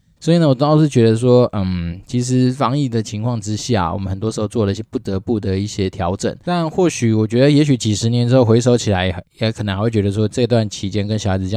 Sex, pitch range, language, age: male, 100-125 Hz, Chinese, 20-39